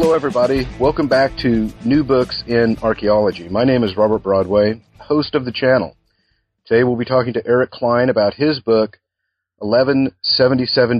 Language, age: English, 40-59